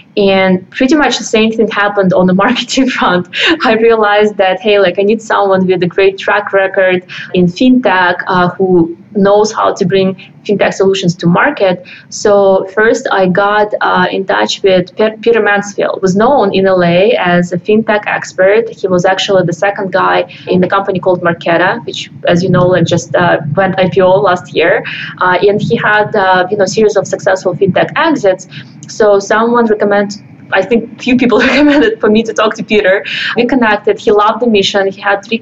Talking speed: 190 wpm